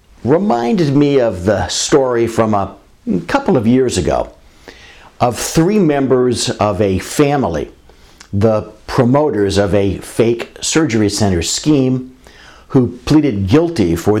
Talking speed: 125 wpm